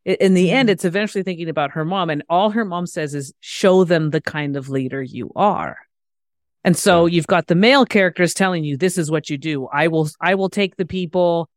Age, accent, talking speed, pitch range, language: 40-59, American, 230 wpm, 160-200 Hz, English